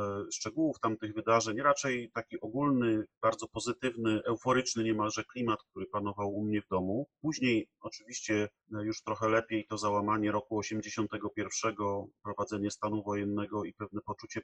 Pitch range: 100-120 Hz